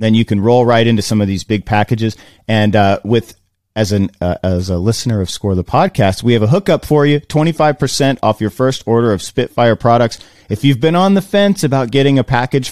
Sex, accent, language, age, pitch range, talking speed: male, American, English, 30-49, 100-130 Hz, 225 wpm